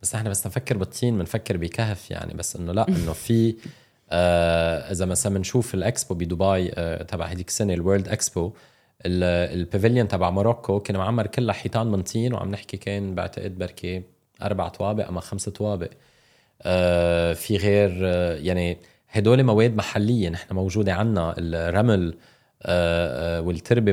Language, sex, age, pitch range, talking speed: English, male, 20-39, 90-105 Hz, 140 wpm